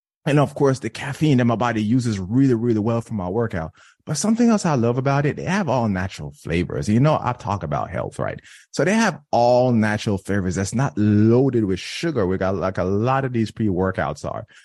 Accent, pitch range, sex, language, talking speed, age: American, 105-150 Hz, male, English, 220 wpm, 20-39